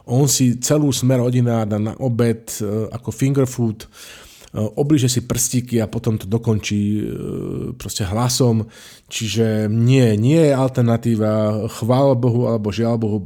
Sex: male